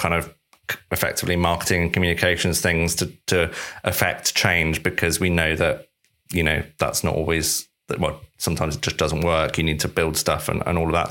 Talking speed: 200 wpm